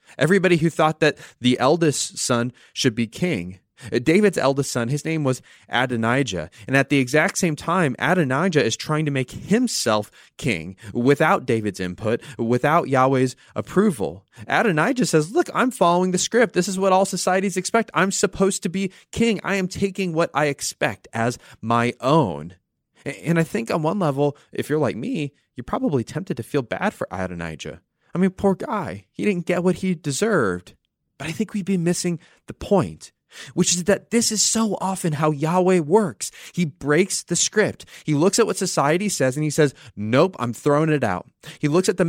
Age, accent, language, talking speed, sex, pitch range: 20-39, American, English, 185 wpm, male, 125-185 Hz